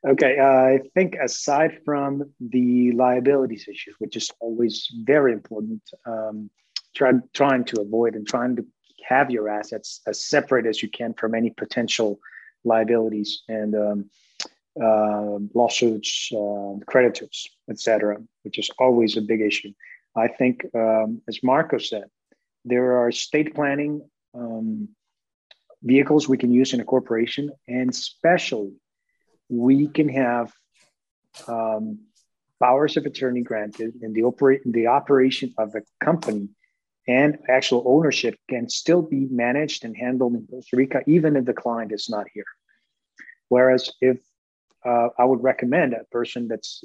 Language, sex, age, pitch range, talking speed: English, male, 30-49, 110-135 Hz, 140 wpm